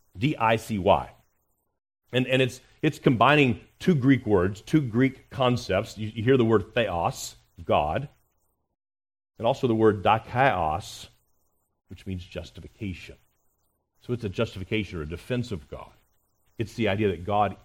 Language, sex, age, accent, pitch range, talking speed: English, male, 40-59, American, 95-125 Hz, 140 wpm